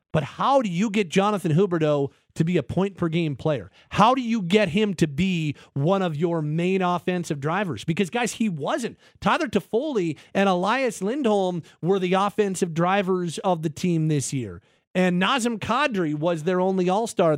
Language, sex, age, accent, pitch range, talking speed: English, male, 40-59, American, 155-195 Hz, 175 wpm